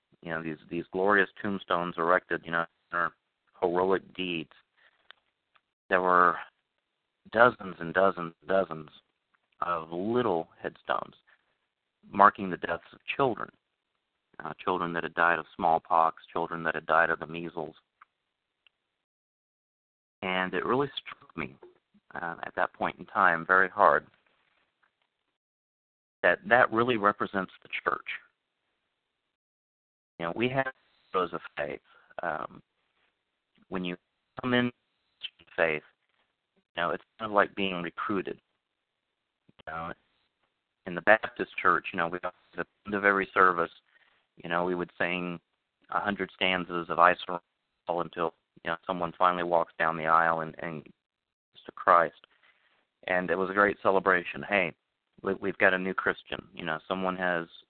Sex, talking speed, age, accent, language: male, 140 wpm, 40-59, American, English